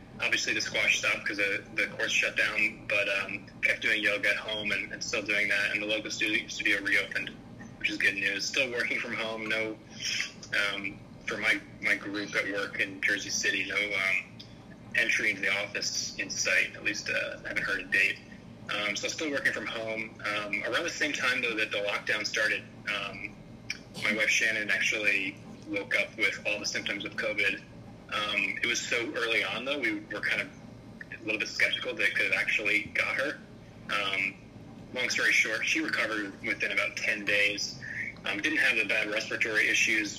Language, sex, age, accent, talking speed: English, male, 20-39, American, 195 wpm